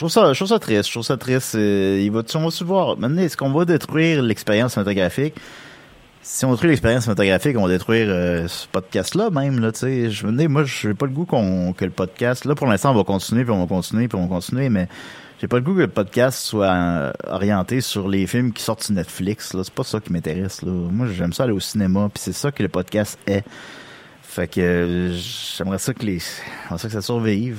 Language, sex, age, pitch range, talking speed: French, male, 30-49, 90-120 Hz, 250 wpm